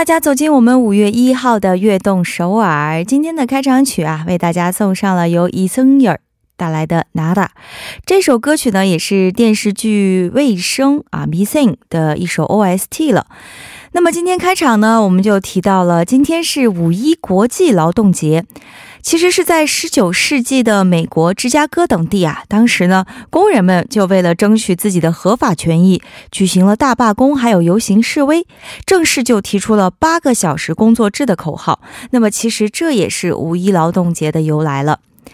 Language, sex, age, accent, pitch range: Korean, female, 20-39, Chinese, 185-265 Hz